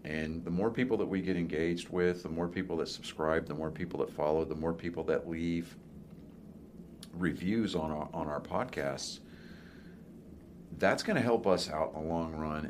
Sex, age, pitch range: male, 40-59, 75-85 Hz